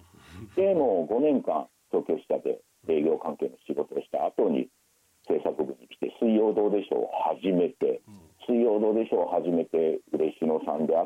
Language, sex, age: Japanese, male, 50-69